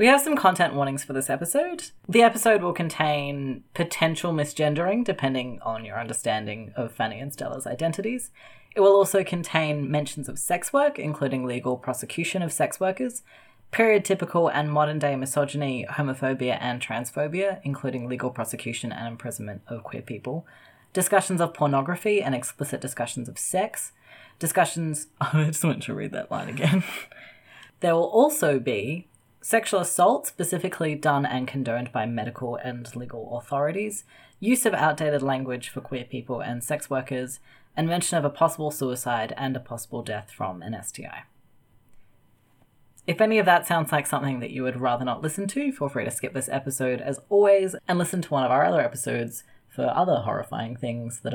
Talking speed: 165 wpm